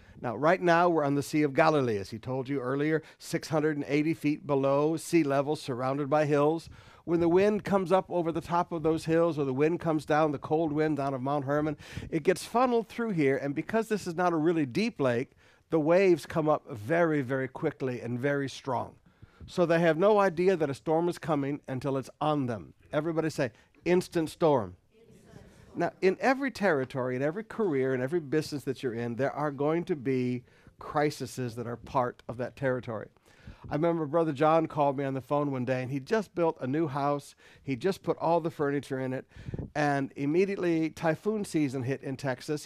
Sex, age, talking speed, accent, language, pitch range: male, 60-79, 205 wpm, American, English, 135-170 Hz